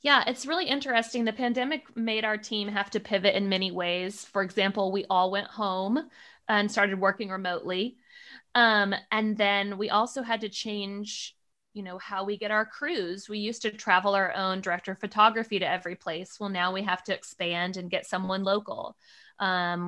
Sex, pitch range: female, 195-230 Hz